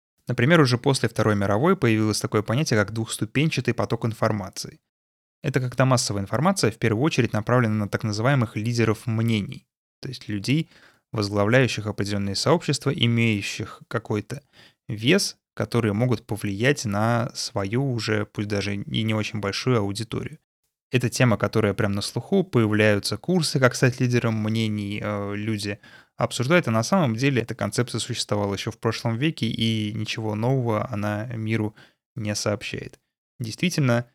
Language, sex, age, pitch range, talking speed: Russian, male, 20-39, 105-130 Hz, 140 wpm